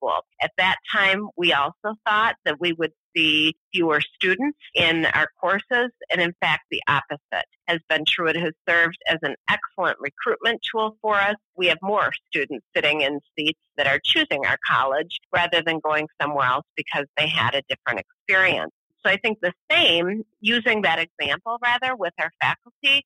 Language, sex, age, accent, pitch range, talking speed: English, female, 40-59, American, 150-190 Hz, 175 wpm